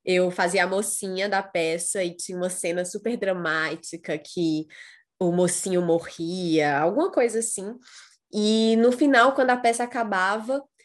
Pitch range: 190-250 Hz